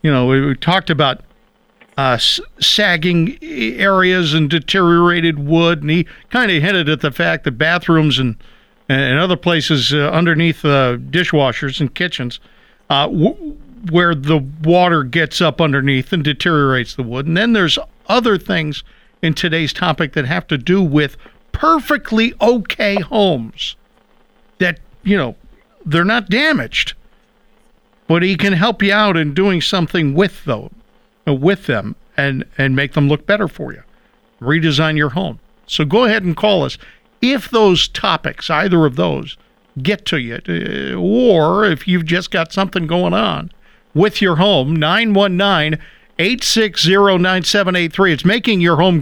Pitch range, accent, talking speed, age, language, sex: 150-200 Hz, American, 145 wpm, 50-69, English, male